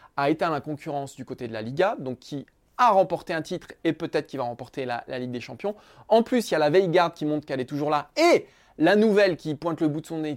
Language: French